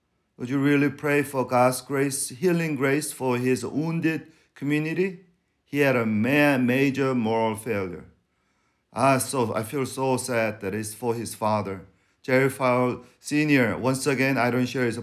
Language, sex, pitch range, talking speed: English, male, 120-150 Hz, 150 wpm